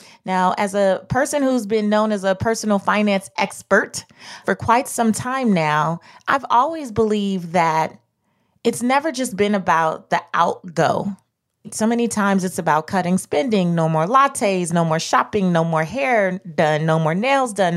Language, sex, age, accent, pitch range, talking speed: English, female, 30-49, American, 170-215 Hz, 165 wpm